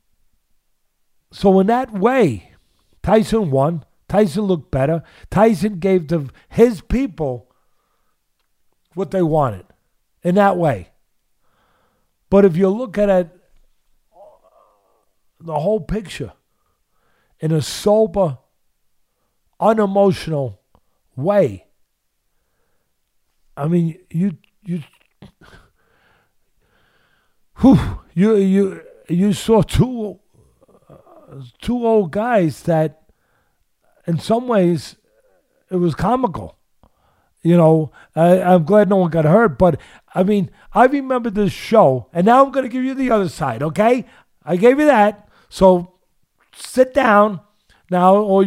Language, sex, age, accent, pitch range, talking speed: English, male, 50-69, American, 160-215 Hz, 110 wpm